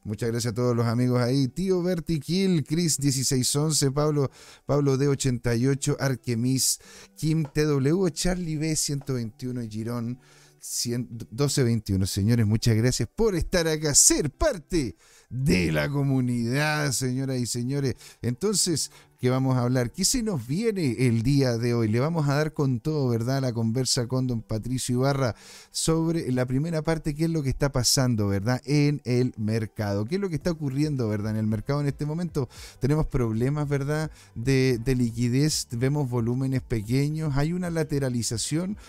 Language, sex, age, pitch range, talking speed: Spanish, male, 40-59, 120-150 Hz, 155 wpm